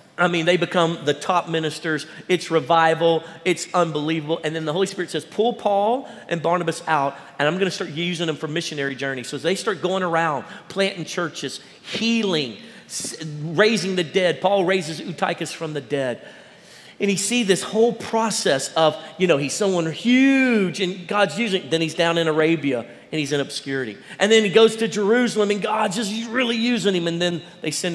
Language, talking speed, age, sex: English, 195 wpm, 40-59, male